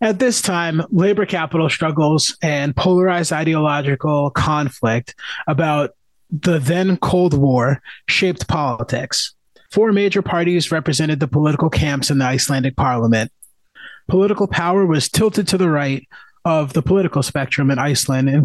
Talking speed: 135 wpm